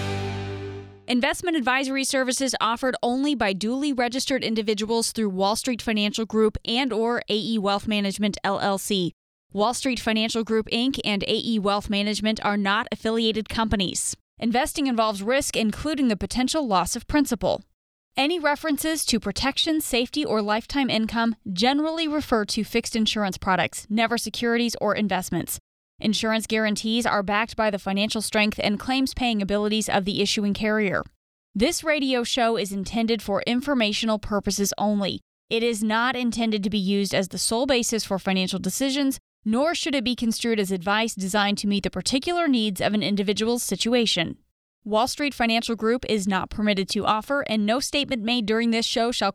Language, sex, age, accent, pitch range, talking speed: English, female, 20-39, American, 205-245 Hz, 160 wpm